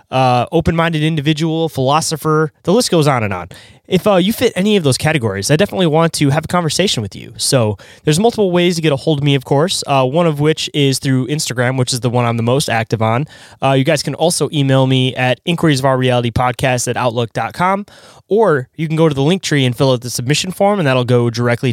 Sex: male